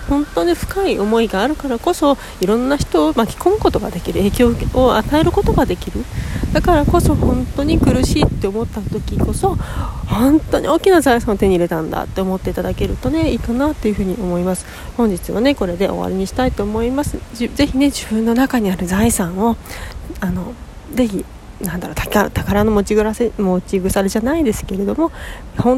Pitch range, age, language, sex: 190-255 Hz, 40-59, Japanese, female